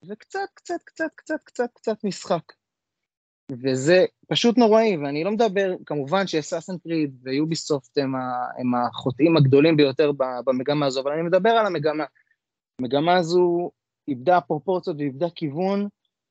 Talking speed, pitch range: 120 wpm, 135-175 Hz